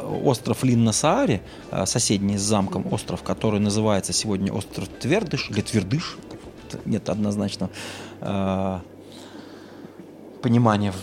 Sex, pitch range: male, 100-120 Hz